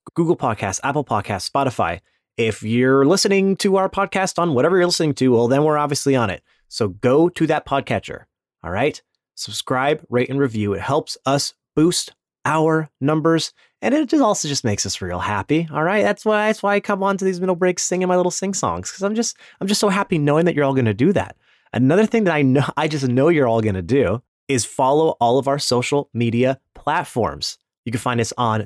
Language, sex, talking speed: English, male, 220 wpm